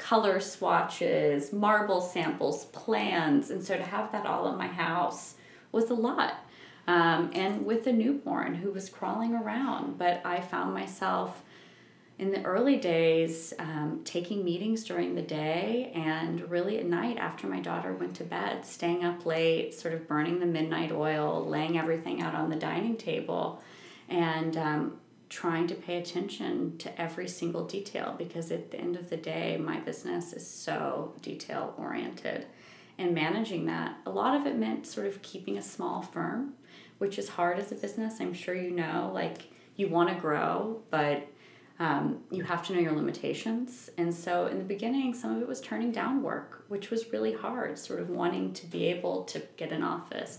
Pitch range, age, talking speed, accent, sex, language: 160-205 Hz, 20-39, 180 wpm, American, female, English